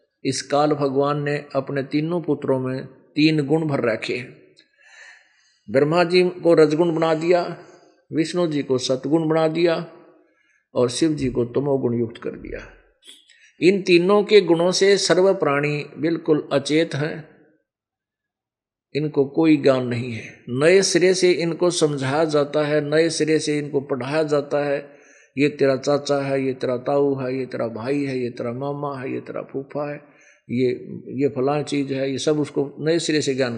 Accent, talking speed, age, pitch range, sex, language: native, 170 wpm, 50-69, 140-175 Hz, male, Hindi